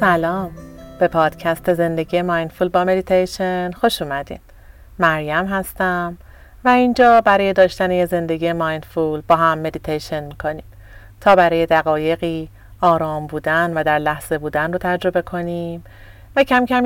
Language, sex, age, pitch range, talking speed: Persian, female, 40-59, 155-190 Hz, 130 wpm